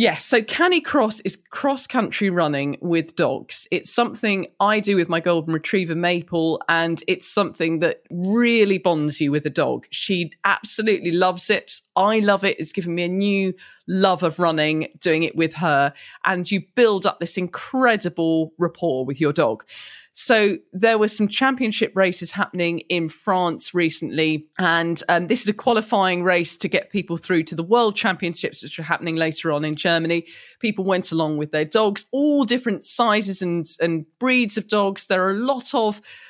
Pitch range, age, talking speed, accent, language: 160-205 Hz, 20-39, 180 wpm, British, English